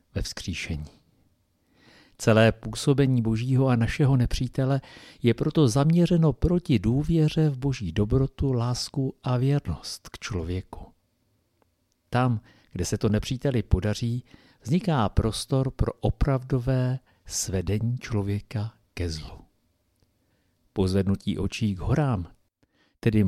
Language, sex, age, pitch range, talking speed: Czech, male, 50-69, 100-130 Hz, 105 wpm